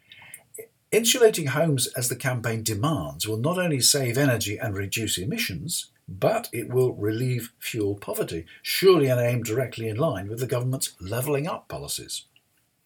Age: 50-69